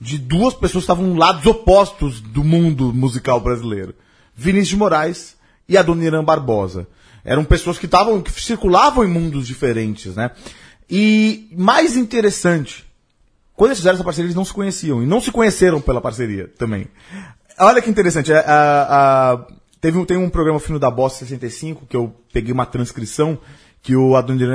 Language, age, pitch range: Portuguese, 30-49, 120-190 Hz